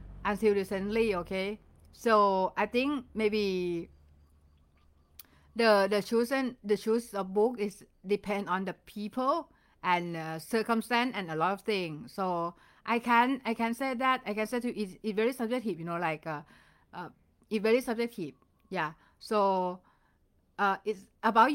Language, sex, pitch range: Thai, female, 175-230 Hz